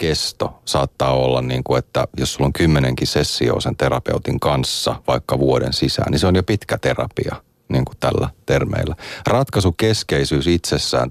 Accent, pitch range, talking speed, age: native, 65-80 Hz, 155 wpm, 30-49